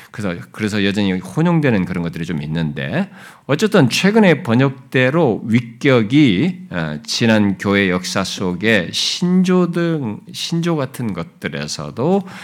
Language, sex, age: Korean, male, 50-69